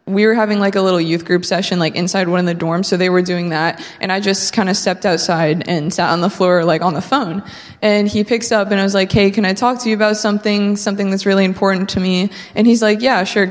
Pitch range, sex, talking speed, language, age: 175-205 Hz, female, 280 wpm, English, 20-39